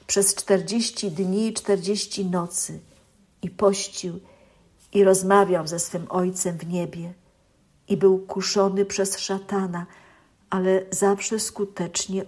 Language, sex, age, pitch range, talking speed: Polish, female, 50-69, 185-230 Hz, 110 wpm